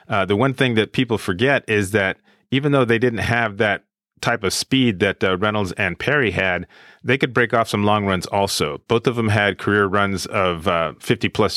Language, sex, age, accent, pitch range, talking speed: English, male, 30-49, American, 95-115 Hz, 220 wpm